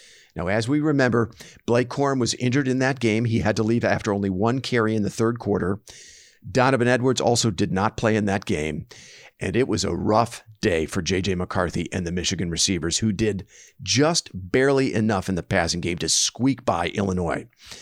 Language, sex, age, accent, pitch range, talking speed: English, male, 50-69, American, 100-125 Hz, 195 wpm